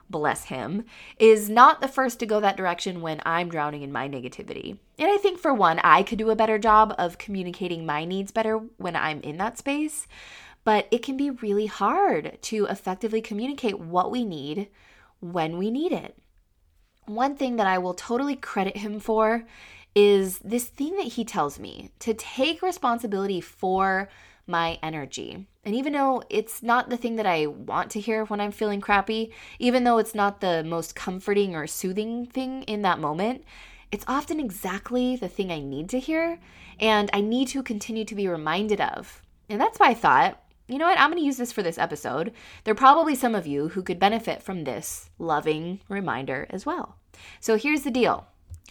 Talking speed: 195 wpm